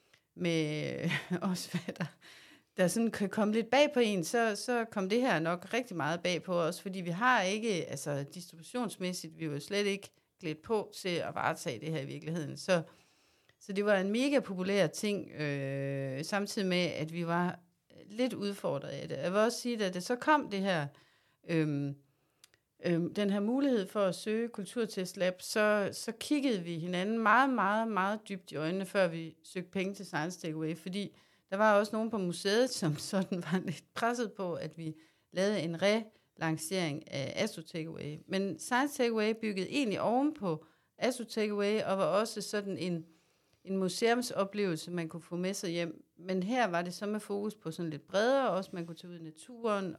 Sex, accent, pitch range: female, native, 165-210 Hz